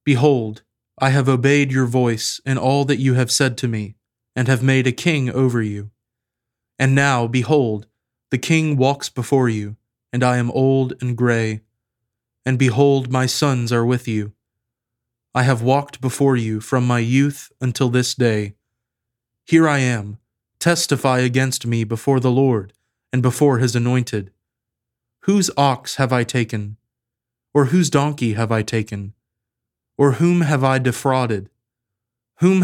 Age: 20-39